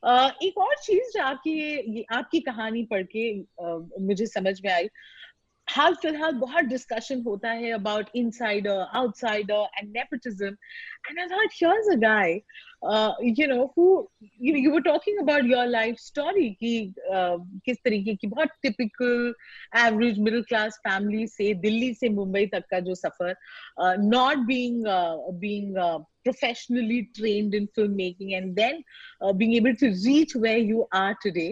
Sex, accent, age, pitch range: female, native, 30-49, 205-265 Hz